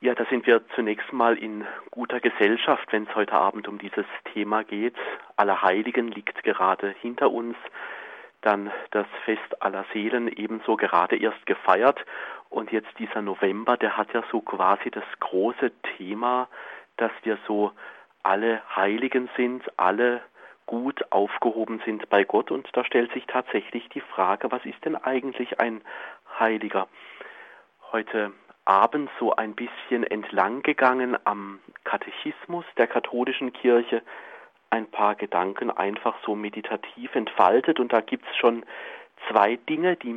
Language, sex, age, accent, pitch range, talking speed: German, male, 40-59, German, 105-125 Hz, 140 wpm